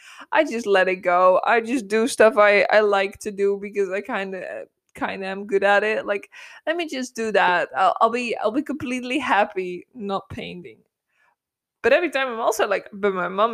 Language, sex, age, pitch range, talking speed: English, female, 20-39, 195-230 Hz, 215 wpm